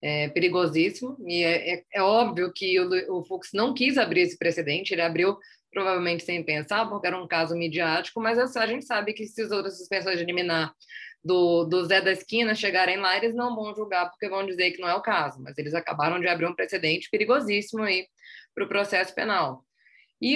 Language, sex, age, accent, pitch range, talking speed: Portuguese, female, 20-39, Brazilian, 175-220 Hz, 205 wpm